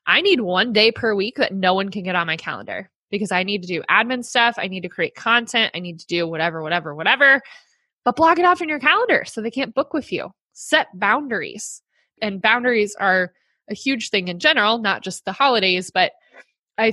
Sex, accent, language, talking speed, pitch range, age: female, American, English, 220 wpm, 195-255 Hz, 20-39